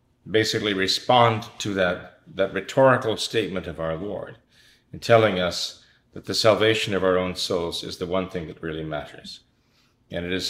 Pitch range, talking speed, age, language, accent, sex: 100-125 Hz, 170 wpm, 40-59, English, American, male